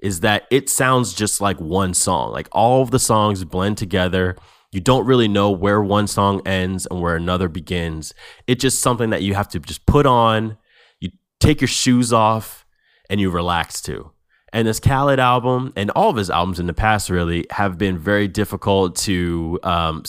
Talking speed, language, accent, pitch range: 195 wpm, English, American, 90-110 Hz